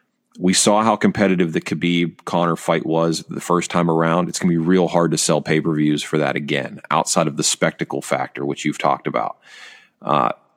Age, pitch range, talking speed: 30-49, 80-90 Hz, 210 wpm